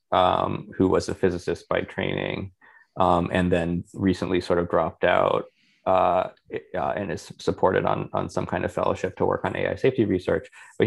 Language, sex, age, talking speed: English, male, 20-39, 180 wpm